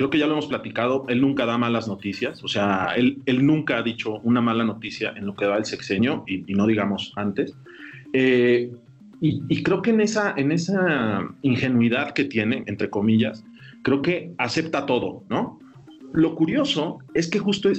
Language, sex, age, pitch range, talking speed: Spanish, male, 40-59, 125-165 Hz, 190 wpm